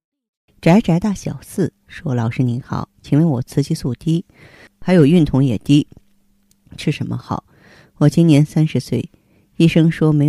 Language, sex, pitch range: Chinese, female, 115-155 Hz